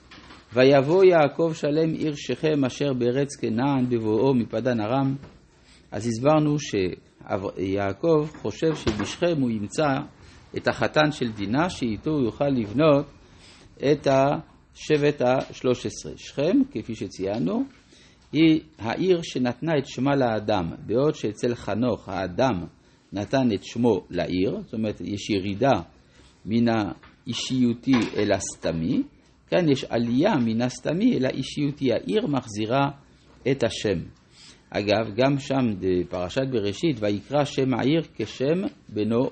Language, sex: Hebrew, male